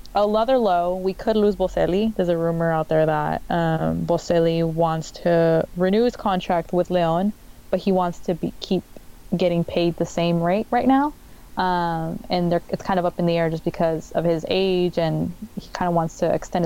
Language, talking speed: English, 200 wpm